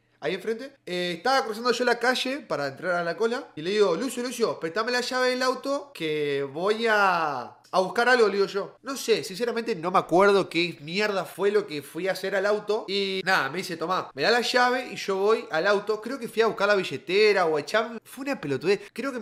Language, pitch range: Spanish, 195-260 Hz